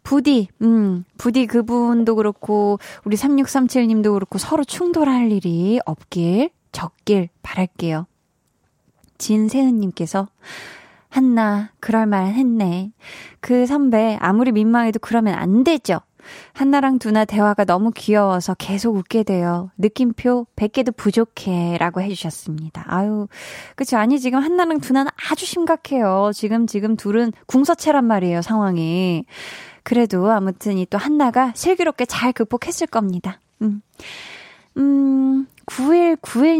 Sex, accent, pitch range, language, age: female, native, 195-255 Hz, Korean, 20-39